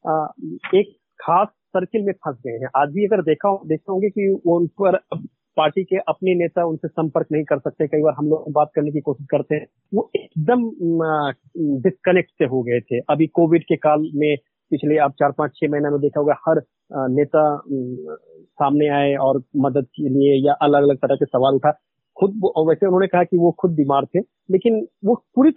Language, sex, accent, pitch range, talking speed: Hindi, male, native, 150-205 Hz, 195 wpm